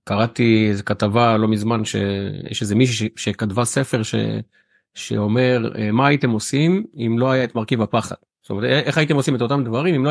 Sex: male